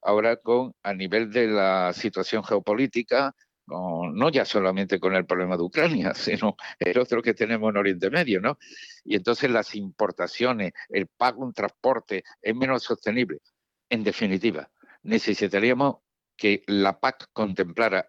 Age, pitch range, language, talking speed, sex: 60-79, 95-120 Hz, Spanish, 145 wpm, male